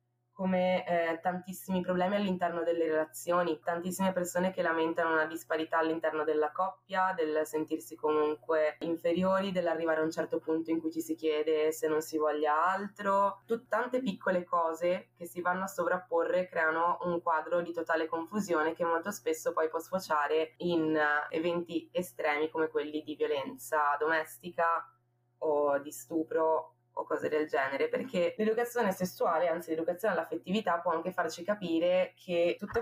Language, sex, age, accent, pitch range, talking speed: Italian, female, 20-39, native, 155-180 Hz, 150 wpm